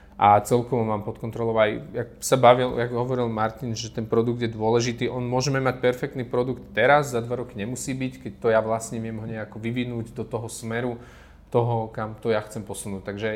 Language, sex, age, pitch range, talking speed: Slovak, male, 30-49, 110-125 Hz, 185 wpm